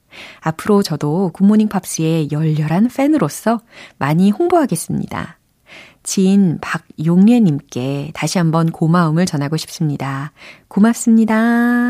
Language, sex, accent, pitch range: Korean, female, native, 155-230 Hz